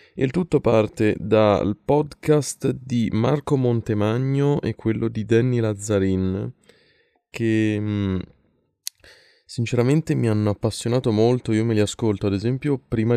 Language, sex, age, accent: Italian, male, 20-39, native